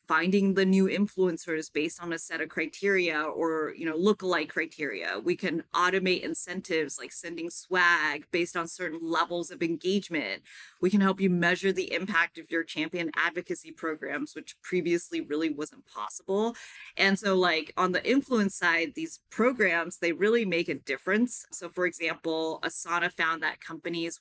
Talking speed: 165 wpm